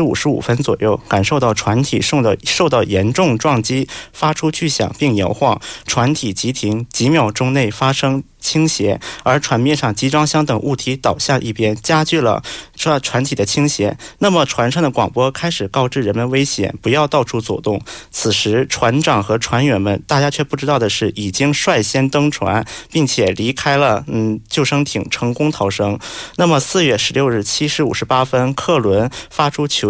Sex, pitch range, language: male, 110-145 Hz, Korean